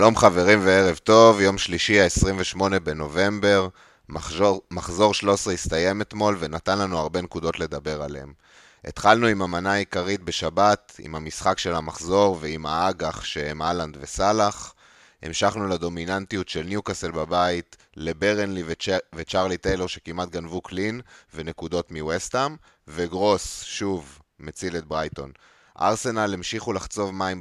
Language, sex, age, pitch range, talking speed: Hebrew, male, 30-49, 85-100 Hz, 120 wpm